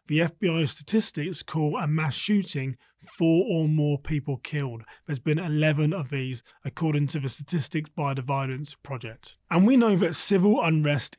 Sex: male